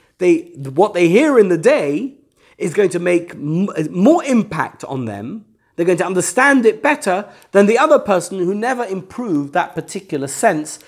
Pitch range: 140-215 Hz